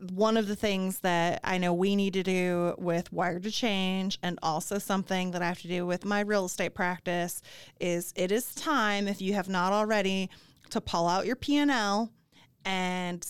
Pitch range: 175-205 Hz